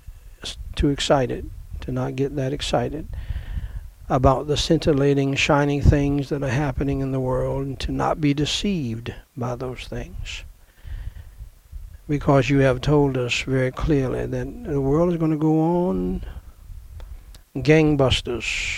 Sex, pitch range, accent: male, 90-140 Hz, American